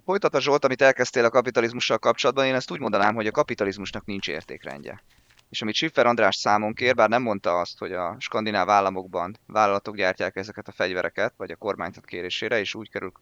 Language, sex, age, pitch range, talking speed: Hungarian, male, 20-39, 105-140 Hz, 190 wpm